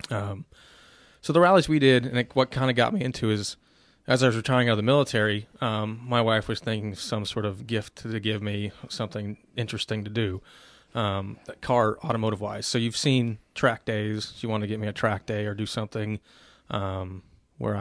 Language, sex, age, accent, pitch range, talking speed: English, male, 20-39, American, 105-115 Hz, 210 wpm